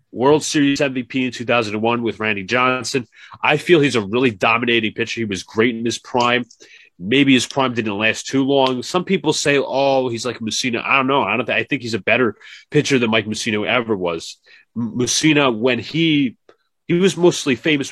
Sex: male